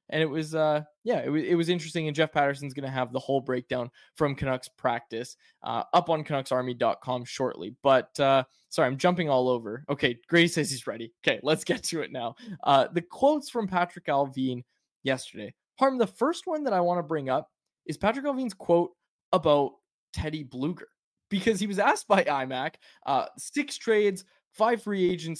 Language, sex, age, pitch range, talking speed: English, male, 20-39, 135-185 Hz, 190 wpm